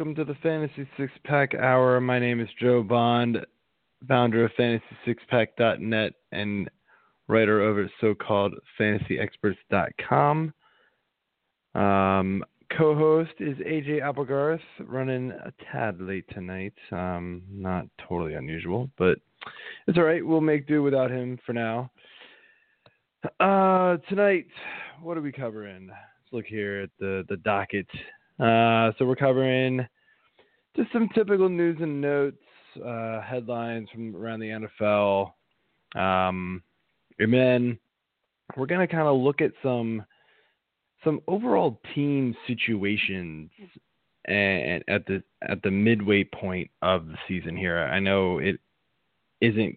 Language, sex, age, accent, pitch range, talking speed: English, male, 20-39, American, 100-140 Hz, 135 wpm